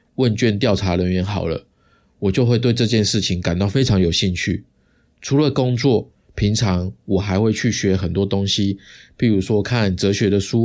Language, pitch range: Chinese, 95-120 Hz